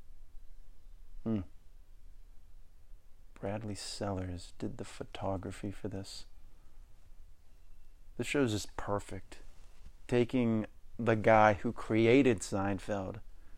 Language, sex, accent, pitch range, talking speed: English, male, American, 85-115 Hz, 85 wpm